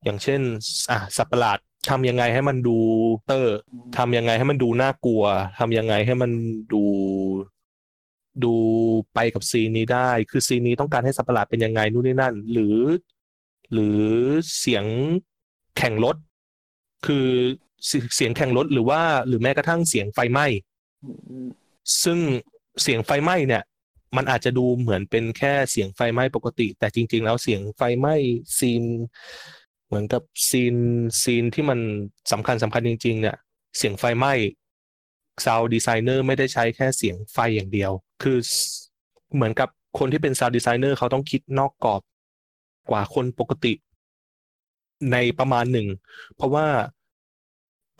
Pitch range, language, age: 110-135 Hz, Thai, 20-39